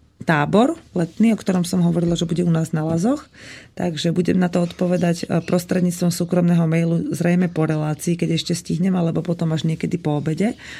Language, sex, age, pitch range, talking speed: Slovak, female, 30-49, 155-175 Hz, 180 wpm